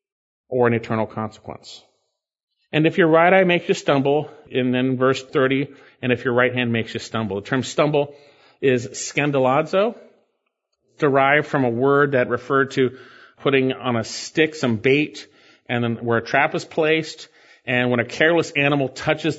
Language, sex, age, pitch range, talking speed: English, male, 40-59, 115-150 Hz, 170 wpm